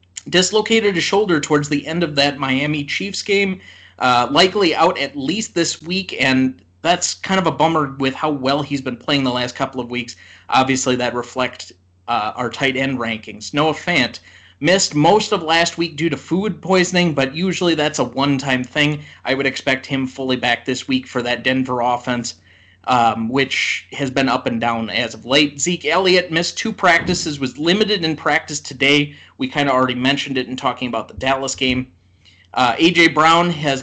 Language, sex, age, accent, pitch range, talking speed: English, male, 30-49, American, 125-160 Hz, 190 wpm